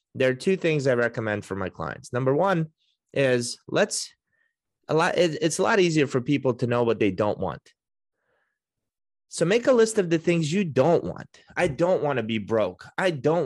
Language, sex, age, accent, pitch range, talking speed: English, male, 30-49, American, 125-180 Hz, 205 wpm